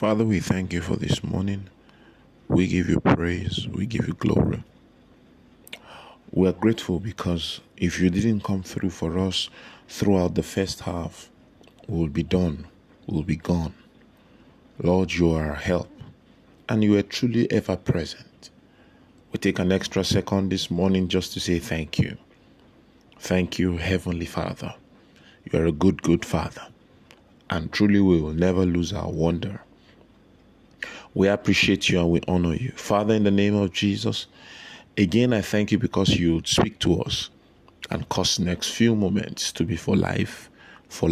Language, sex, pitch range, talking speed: English, male, 85-100 Hz, 160 wpm